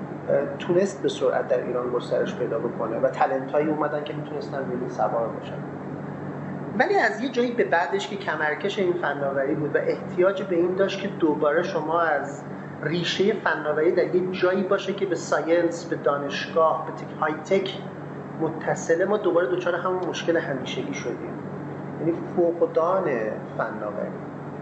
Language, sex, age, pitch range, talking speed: Persian, male, 30-49, 150-190 Hz, 155 wpm